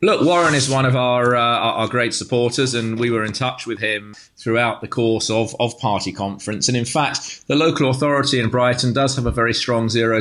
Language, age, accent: English, 30-49, British